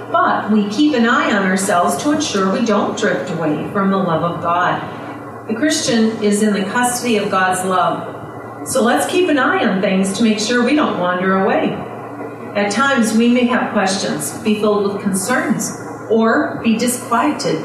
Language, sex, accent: English, female, American